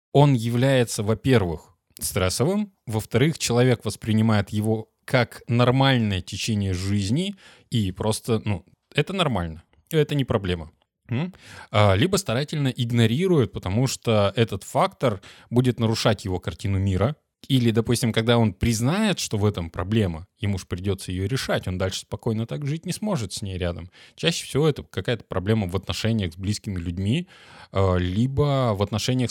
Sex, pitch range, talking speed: male, 100-130 Hz, 140 wpm